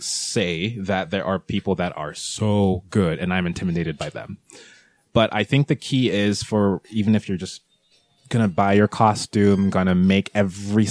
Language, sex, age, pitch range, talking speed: English, male, 20-39, 105-135 Hz, 185 wpm